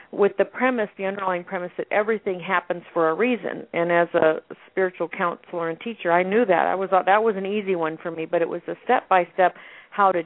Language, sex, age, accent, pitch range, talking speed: English, female, 50-69, American, 170-195 Hz, 240 wpm